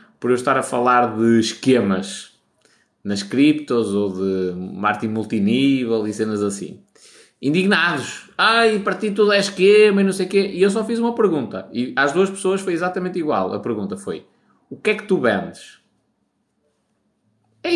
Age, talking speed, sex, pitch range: 20-39, 170 wpm, male, 125-185 Hz